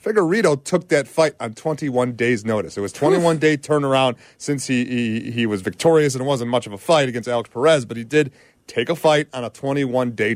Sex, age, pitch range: male, 30-49, 120-155 Hz